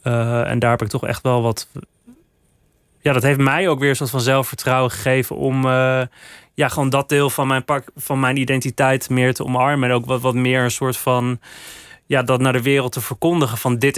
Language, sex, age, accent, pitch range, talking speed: Dutch, male, 20-39, Dutch, 120-135 Hz, 220 wpm